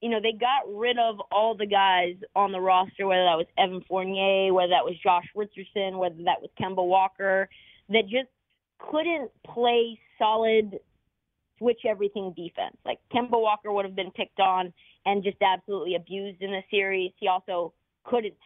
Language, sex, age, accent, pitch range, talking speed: English, female, 30-49, American, 185-220 Hz, 170 wpm